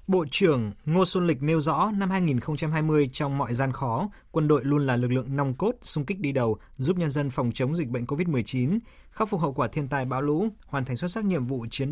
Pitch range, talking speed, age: 130-170 Hz, 240 wpm, 20-39